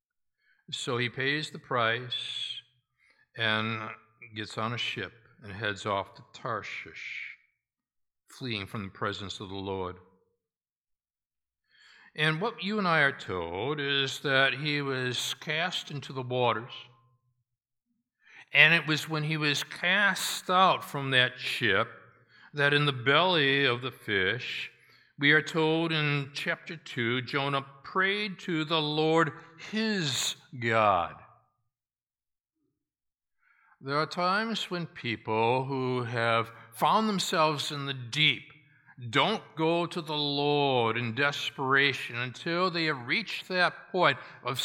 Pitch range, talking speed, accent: 120-160 Hz, 125 wpm, American